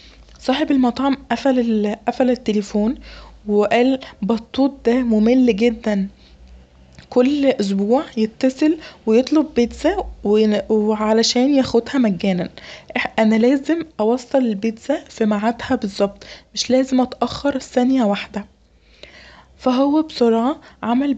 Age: 20-39